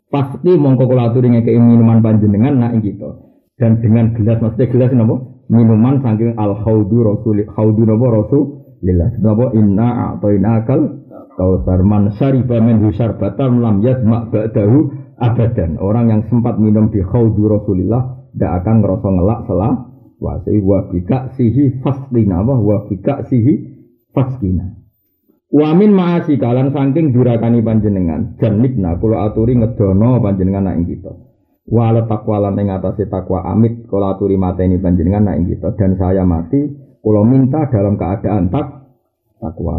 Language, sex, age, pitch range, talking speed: Indonesian, male, 50-69, 95-120 Hz, 135 wpm